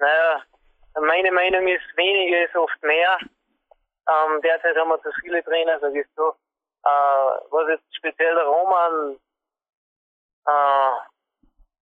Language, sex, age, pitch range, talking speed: German, male, 20-39, 145-180 Hz, 120 wpm